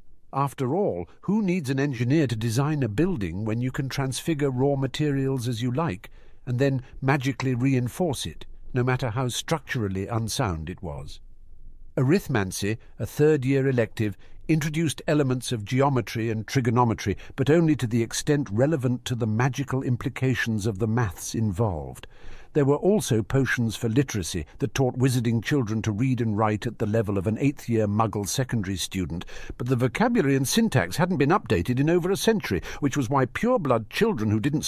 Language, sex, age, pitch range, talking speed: English, male, 60-79, 105-140 Hz, 170 wpm